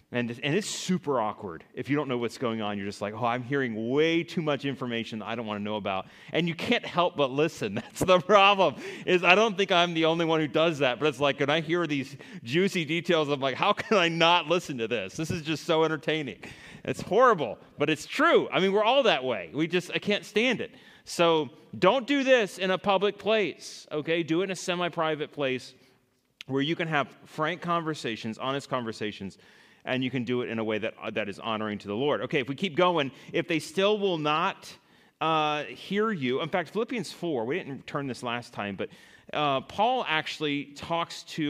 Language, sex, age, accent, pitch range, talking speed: English, male, 30-49, American, 125-170 Hz, 225 wpm